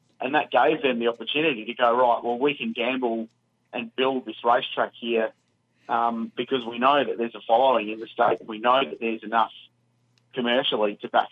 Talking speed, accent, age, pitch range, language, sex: 195 wpm, Australian, 30-49, 110-130 Hz, English, male